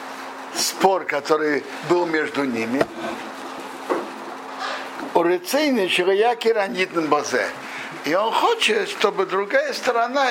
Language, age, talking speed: Russian, 60-79, 100 wpm